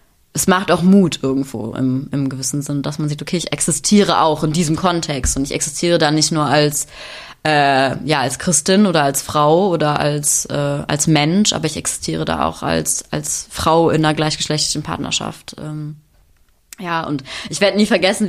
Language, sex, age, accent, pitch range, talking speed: German, female, 20-39, German, 150-200 Hz, 185 wpm